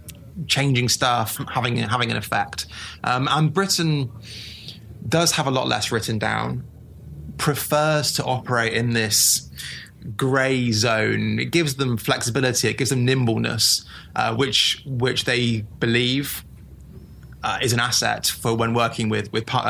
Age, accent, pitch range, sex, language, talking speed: 20-39, British, 110-135 Hz, male, English, 140 wpm